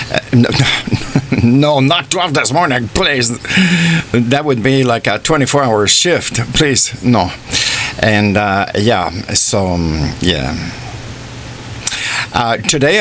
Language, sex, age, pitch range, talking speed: English, male, 50-69, 115-145 Hz, 100 wpm